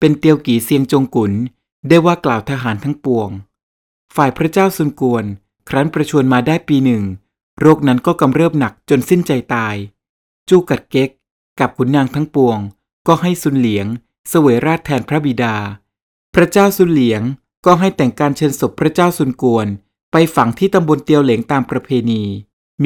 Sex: male